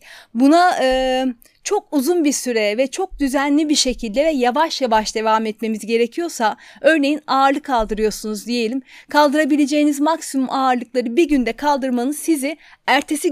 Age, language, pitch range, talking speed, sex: 40-59, Turkish, 235-305 Hz, 130 wpm, female